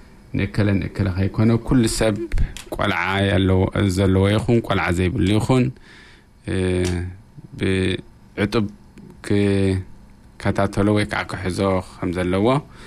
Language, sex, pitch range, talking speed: English, male, 90-110 Hz, 45 wpm